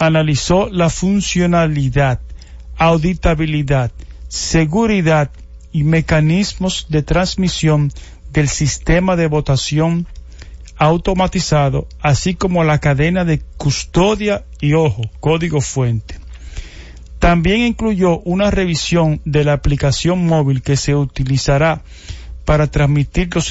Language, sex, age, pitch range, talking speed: English, male, 50-69, 135-170 Hz, 95 wpm